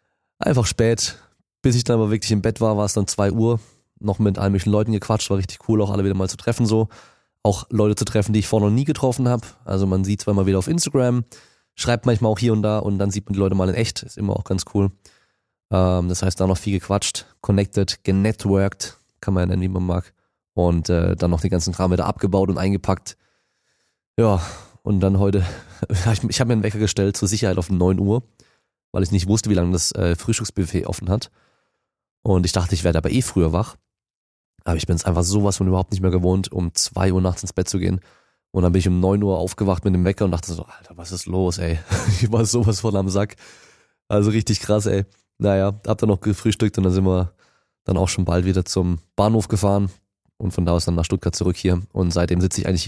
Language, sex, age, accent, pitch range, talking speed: German, male, 20-39, German, 95-110 Hz, 240 wpm